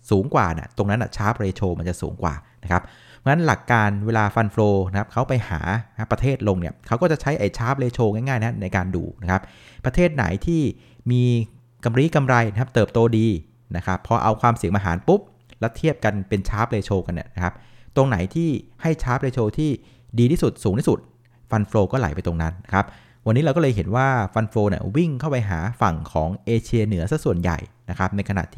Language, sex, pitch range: Thai, male, 95-120 Hz